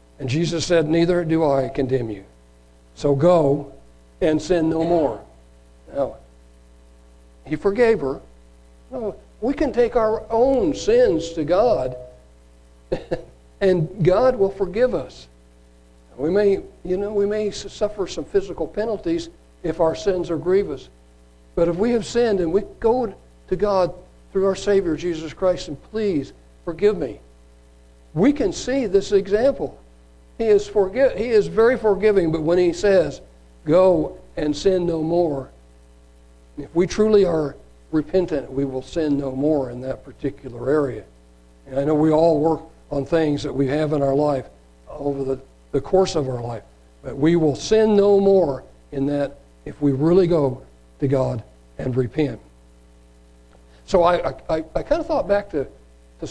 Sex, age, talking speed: male, 60-79, 155 wpm